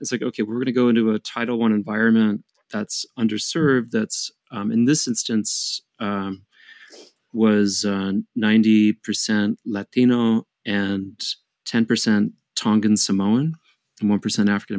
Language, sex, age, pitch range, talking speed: English, male, 30-49, 105-125 Hz, 125 wpm